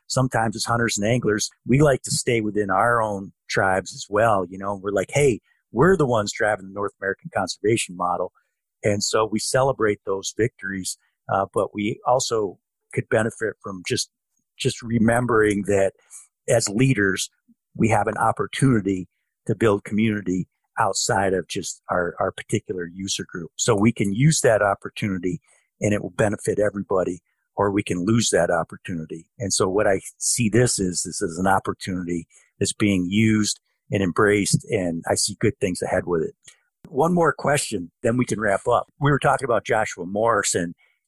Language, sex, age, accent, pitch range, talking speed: English, male, 50-69, American, 95-115 Hz, 170 wpm